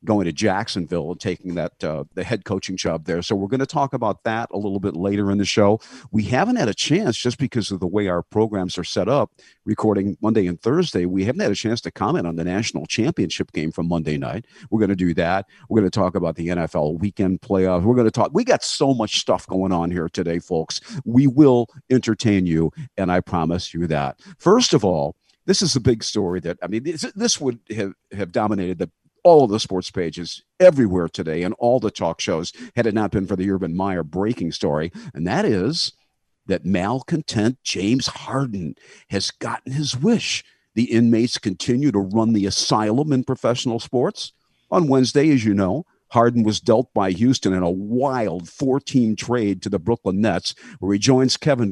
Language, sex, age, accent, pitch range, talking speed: English, male, 50-69, American, 95-125 Hz, 210 wpm